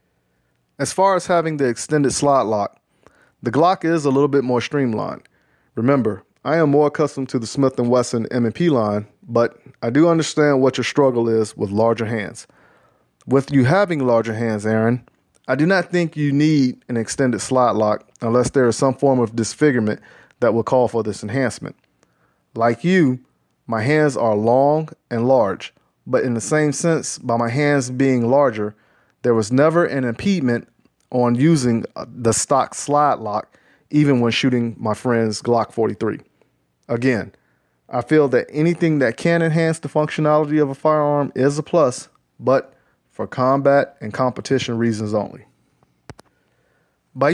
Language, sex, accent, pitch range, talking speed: English, male, American, 115-145 Hz, 160 wpm